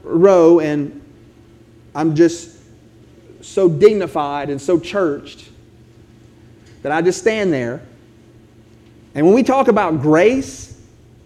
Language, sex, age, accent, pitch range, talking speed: English, male, 30-49, American, 115-185 Hz, 105 wpm